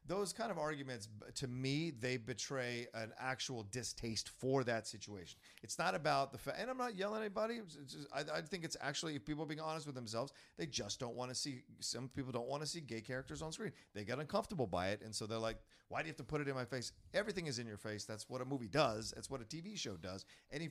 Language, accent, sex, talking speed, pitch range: English, American, male, 265 wpm, 115-145 Hz